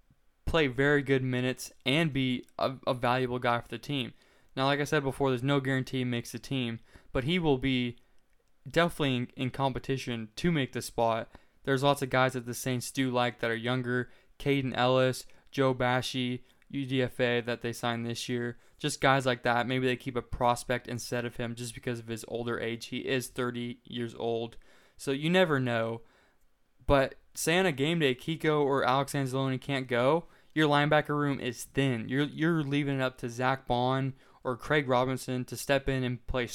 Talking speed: 195 wpm